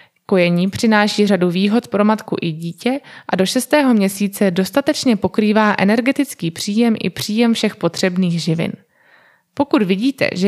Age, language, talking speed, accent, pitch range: 20-39, Czech, 130 wpm, native, 190-240 Hz